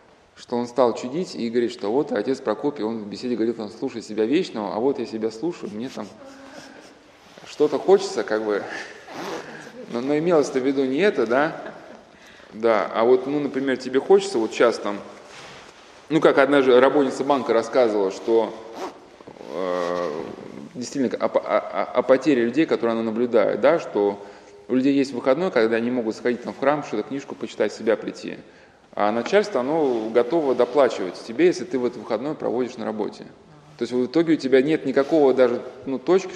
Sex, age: male, 20-39